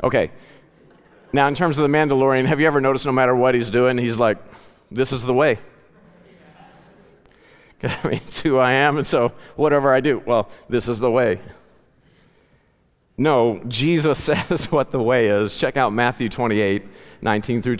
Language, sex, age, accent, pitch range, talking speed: English, male, 40-59, American, 115-145 Hz, 170 wpm